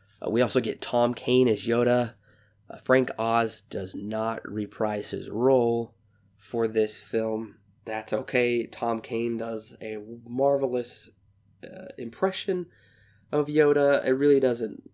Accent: American